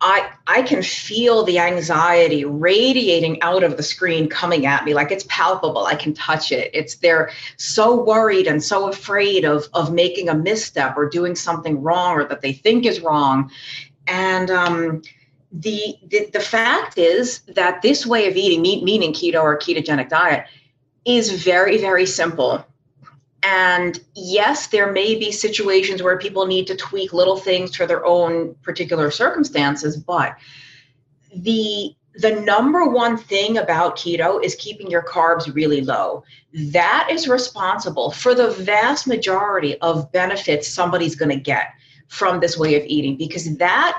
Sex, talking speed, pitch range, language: female, 160 wpm, 155-210 Hz, English